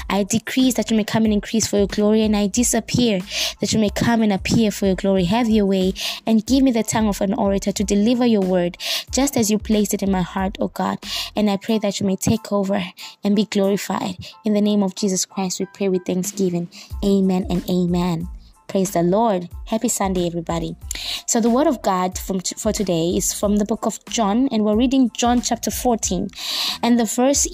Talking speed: 220 wpm